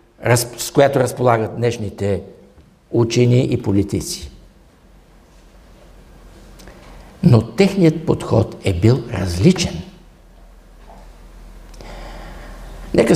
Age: 60-79